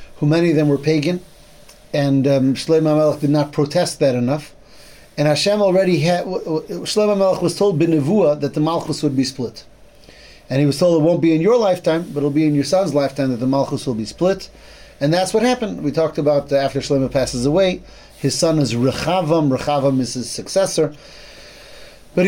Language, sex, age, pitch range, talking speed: English, male, 30-49, 140-180 Hz, 200 wpm